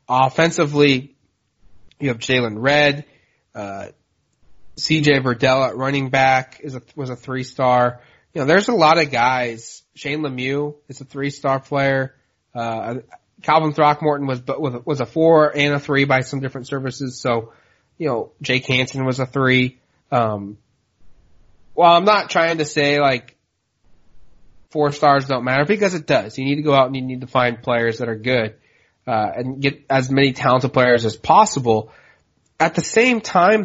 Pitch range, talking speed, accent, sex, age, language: 125-150 Hz, 170 wpm, American, male, 30-49, English